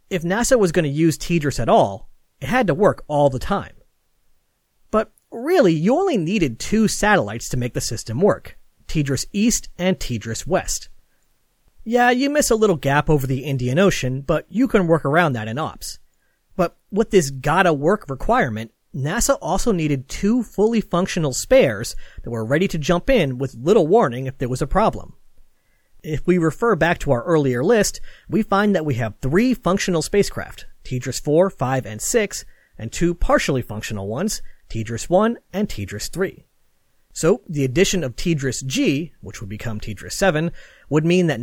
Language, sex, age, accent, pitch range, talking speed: English, male, 40-59, American, 130-195 Hz, 170 wpm